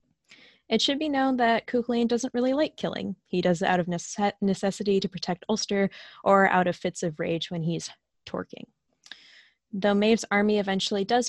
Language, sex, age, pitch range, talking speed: English, female, 10-29, 170-210 Hz, 175 wpm